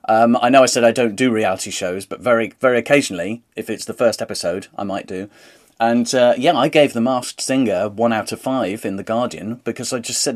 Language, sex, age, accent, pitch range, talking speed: English, male, 40-59, British, 100-135 Hz, 235 wpm